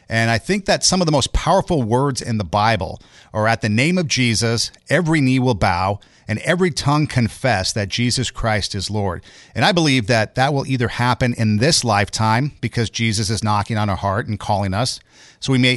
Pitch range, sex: 110-140 Hz, male